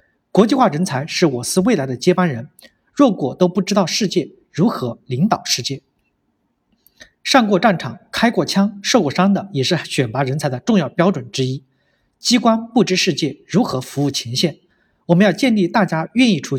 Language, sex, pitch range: Chinese, male, 140-210 Hz